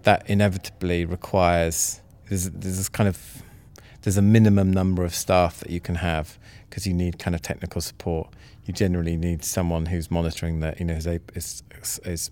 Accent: British